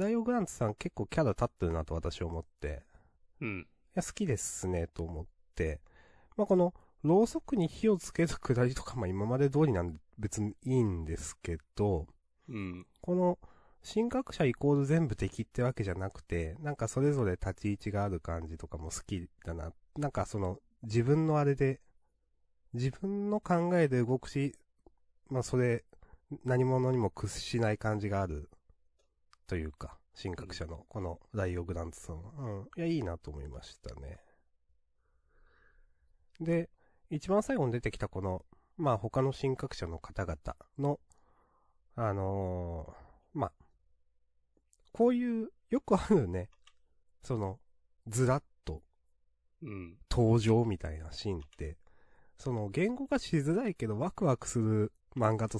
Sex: male